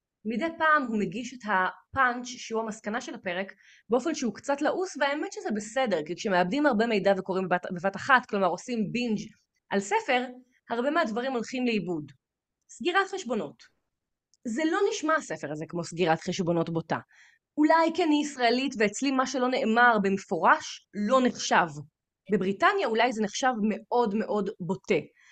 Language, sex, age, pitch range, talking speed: Hebrew, female, 20-39, 200-280 Hz, 145 wpm